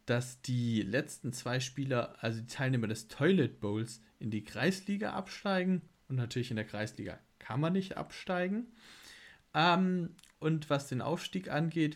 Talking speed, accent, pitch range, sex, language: 150 wpm, German, 115-155 Hz, male, German